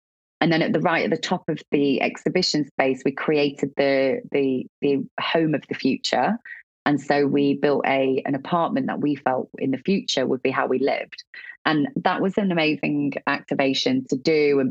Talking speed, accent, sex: 195 wpm, British, female